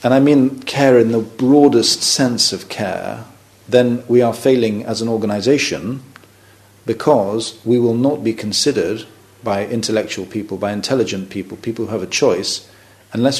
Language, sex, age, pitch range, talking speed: English, male, 40-59, 105-125 Hz, 155 wpm